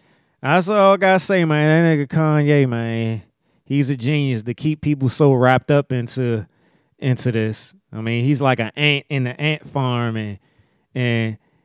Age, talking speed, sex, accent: 30-49, 175 wpm, male, American